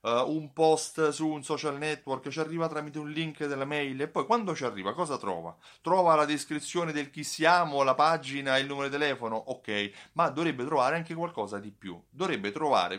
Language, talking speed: Italian, 200 wpm